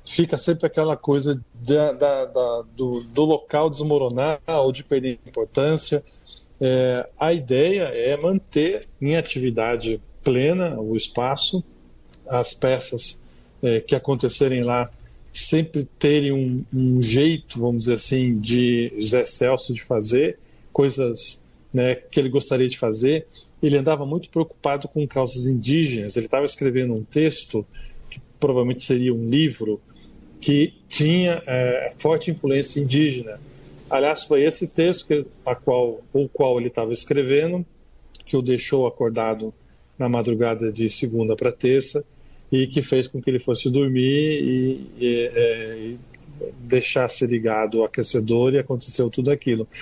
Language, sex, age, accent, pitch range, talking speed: Portuguese, male, 40-59, Brazilian, 120-150 Hz, 130 wpm